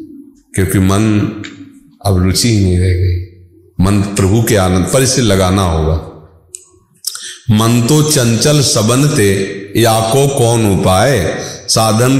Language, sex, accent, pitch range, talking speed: Hindi, male, native, 95-130 Hz, 120 wpm